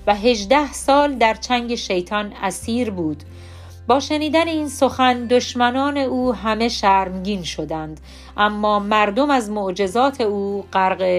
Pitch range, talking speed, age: 190-260 Hz, 125 wpm, 40-59